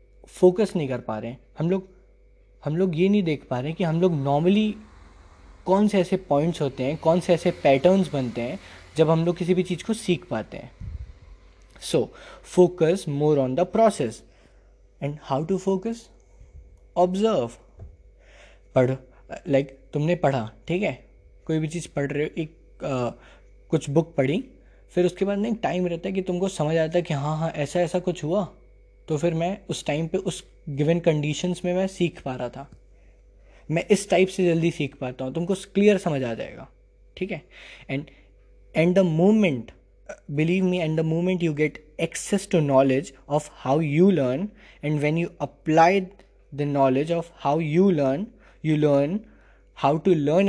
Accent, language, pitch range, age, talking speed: Indian, English, 140-185 Hz, 20-39, 115 wpm